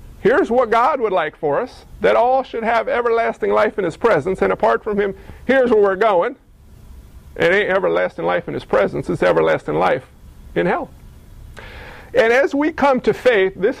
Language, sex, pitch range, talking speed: English, male, 195-255 Hz, 185 wpm